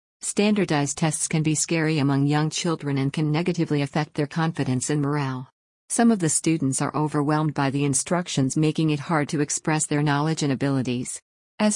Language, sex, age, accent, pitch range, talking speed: English, female, 50-69, American, 145-165 Hz, 180 wpm